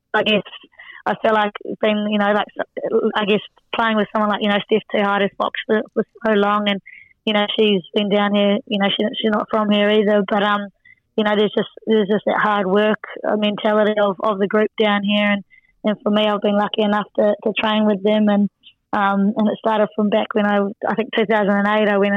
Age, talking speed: 20-39, 230 wpm